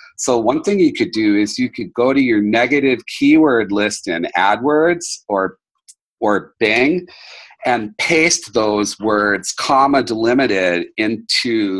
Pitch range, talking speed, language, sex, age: 110-150 Hz, 135 wpm, English, male, 40-59